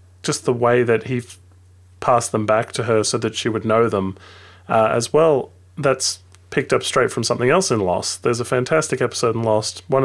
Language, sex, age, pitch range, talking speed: English, male, 30-49, 100-125 Hz, 210 wpm